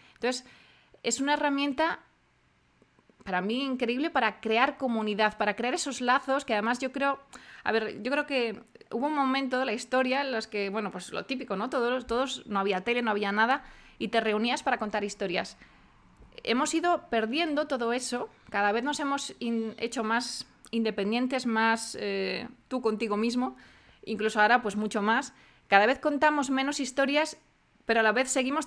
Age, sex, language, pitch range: 20-39, female, Spanish, 215-260 Hz